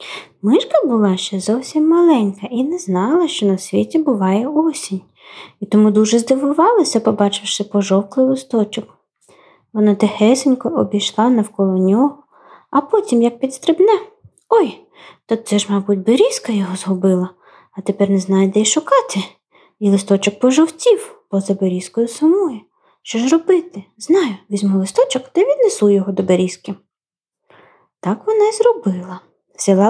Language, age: Ukrainian, 20-39